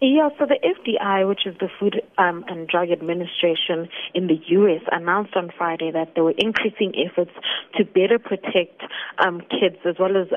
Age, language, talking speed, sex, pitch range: 30-49, English, 180 wpm, female, 175-210 Hz